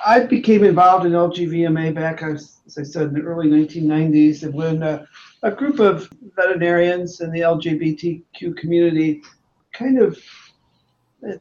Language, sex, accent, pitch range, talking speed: English, male, American, 150-175 Hz, 135 wpm